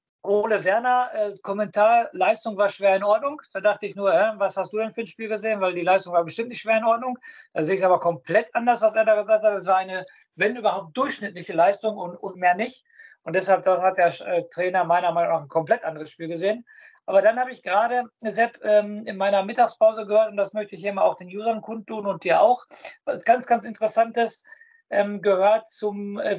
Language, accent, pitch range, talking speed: German, German, 195-245 Hz, 230 wpm